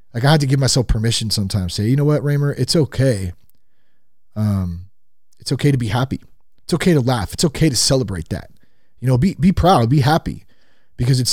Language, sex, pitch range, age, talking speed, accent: English, male, 110-145 Hz, 30-49, 205 wpm, American